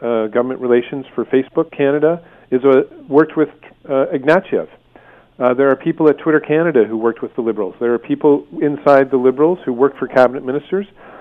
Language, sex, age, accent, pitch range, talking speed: English, male, 40-59, American, 115-145 Hz, 185 wpm